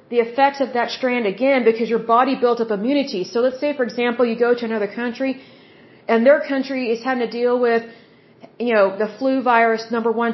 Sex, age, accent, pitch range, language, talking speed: female, 40-59, American, 215-260 Hz, English, 215 wpm